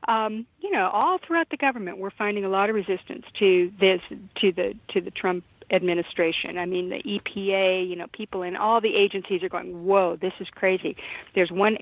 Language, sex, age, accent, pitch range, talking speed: English, female, 50-69, American, 180-210 Hz, 205 wpm